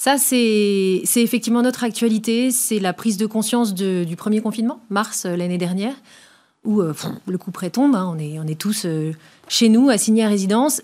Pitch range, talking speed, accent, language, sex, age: 190-230 Hz, 200 wpm, French, French, female, 30-49